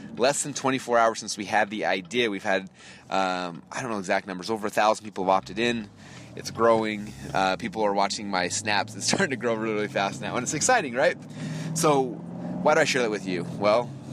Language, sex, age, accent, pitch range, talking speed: English, male, 30-49, American, 100-120 Hz, 215 wpm